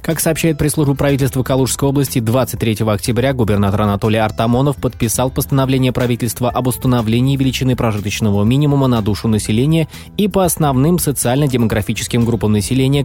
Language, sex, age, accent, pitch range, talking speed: Russian, male, 20-39, native, 110-145 Hz, 130 wpm